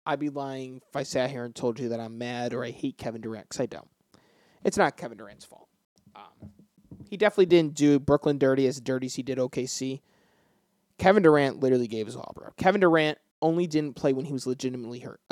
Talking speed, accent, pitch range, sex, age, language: 220 wpm, American, 130-145 Hz, male, 20-39, English